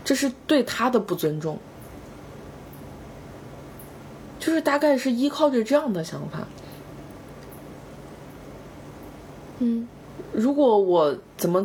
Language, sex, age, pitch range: Chinese, female, 20-39, 195-260 Hz